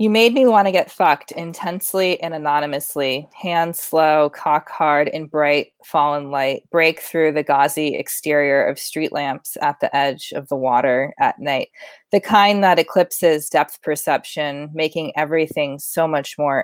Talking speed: 160 wpm